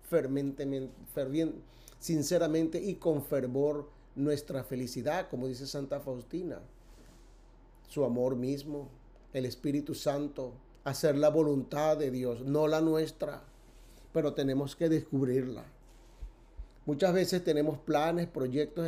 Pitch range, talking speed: 135-165 Hz, 110 wpm